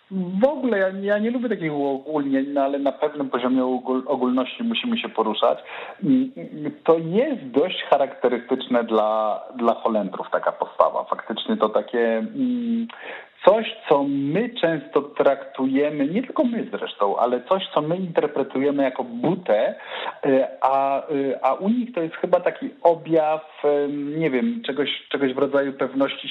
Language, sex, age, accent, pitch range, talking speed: Polish, male, 40-59, native, 125-180 Hz, 135 wpm